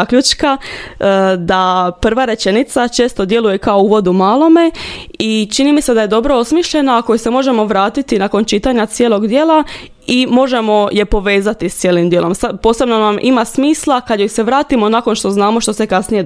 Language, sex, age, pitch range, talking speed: Croatian, female, 20-39, 200-250 Hz, 175 wpm